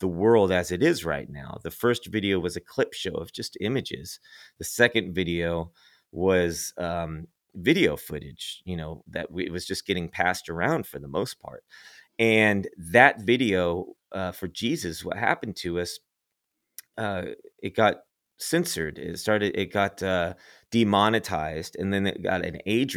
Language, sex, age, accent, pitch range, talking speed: English, male, 30-49, American, 90-115 Hz, 165 wpm